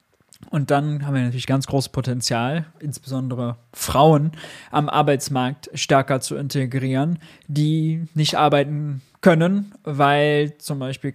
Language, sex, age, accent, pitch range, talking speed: German, male, 20-39, German, 135-165 Hz, 120 wpm